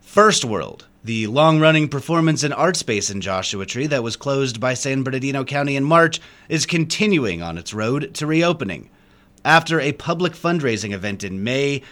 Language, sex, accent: English, male, American